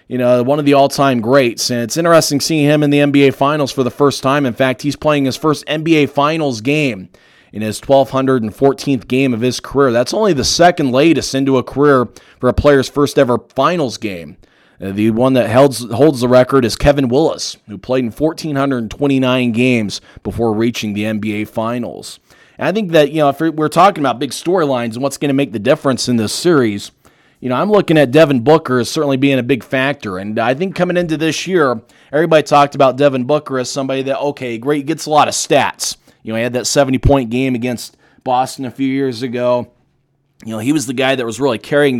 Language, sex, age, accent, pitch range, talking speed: English, male, 20-39, American, 120-145 Hz, 220 wpm